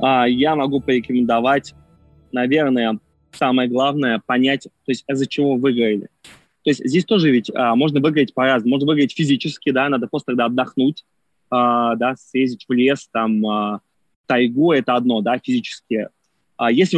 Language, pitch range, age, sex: Russian, 125-155 Hz, 20-39, male